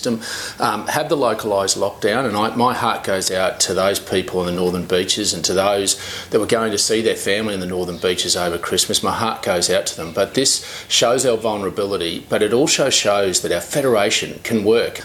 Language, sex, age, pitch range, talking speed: Bulgarian, male, 40-59, 190-230 Hz, 215 wpm